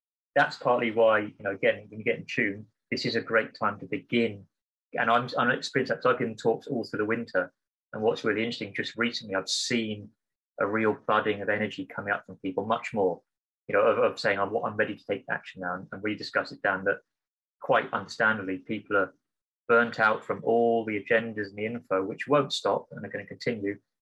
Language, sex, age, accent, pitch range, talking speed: English, male, 30-49, British, 105-130 Hz, 220 wpm